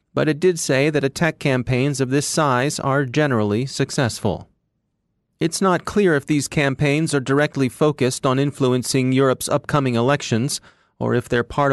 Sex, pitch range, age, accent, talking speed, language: male, 120-150 Hz, 40-59, American, 160 wpm, English